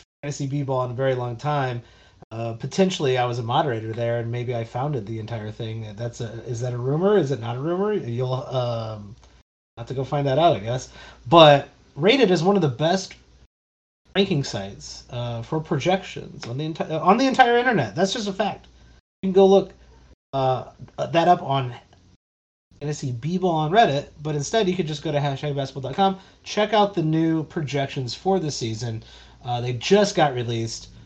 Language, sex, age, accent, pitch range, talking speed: English, male, 30-49, American, 120-165 Hz, 190 wpm